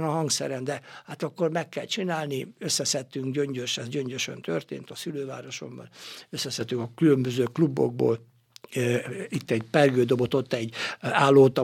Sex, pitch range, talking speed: male, 130-155 Hz, 130 wpm